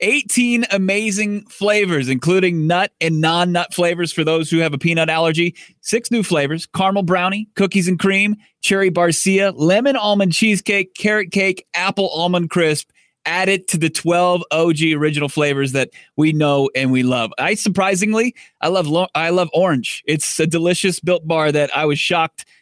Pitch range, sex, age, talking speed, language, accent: 160-195 Hz, male, 30-49, 165 wpm, English, American